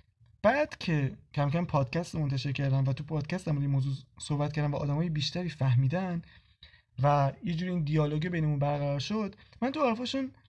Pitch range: 145-190 Hz